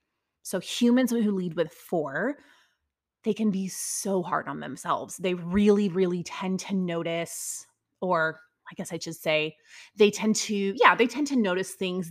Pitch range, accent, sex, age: 175-210 Hz, American, female, 20-39